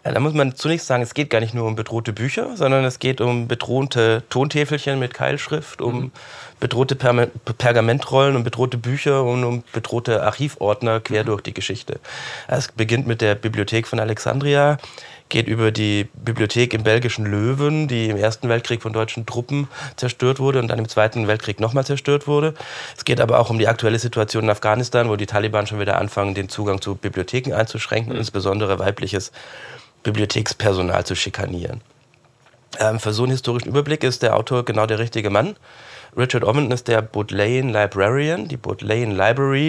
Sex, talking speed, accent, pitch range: male, 170 wpm, German, 105-130 Hz